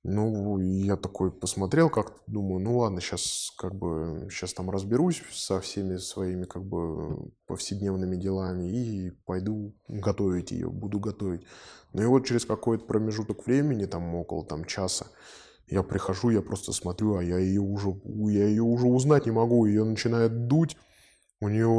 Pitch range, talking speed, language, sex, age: 95-110 Hz, 160 wpm, Russian, male, 20-39